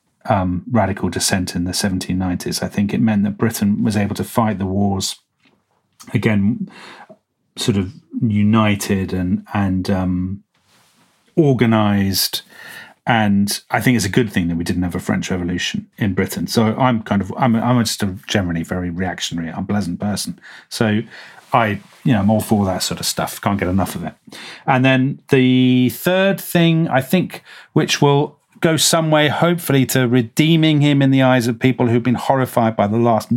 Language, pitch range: English, 100-125 Hz